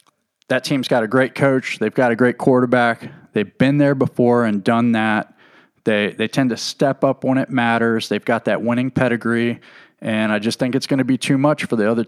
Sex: male